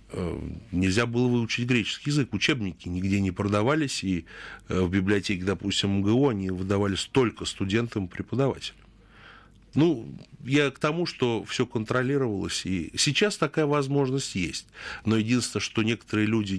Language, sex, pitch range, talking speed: Russian, male, 100-140 Hz, 125 wpm